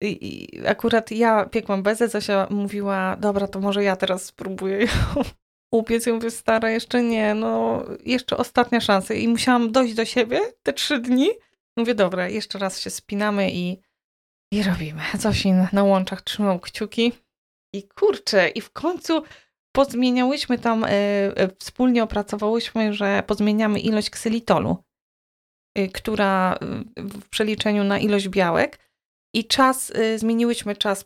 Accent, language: native, Polish